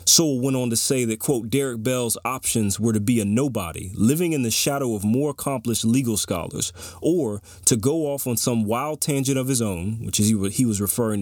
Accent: American